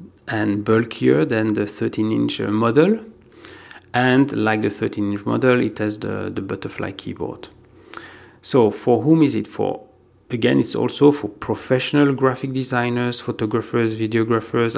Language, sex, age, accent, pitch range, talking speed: English, male, 40-59, French, 110-150 Hz, 130 wpm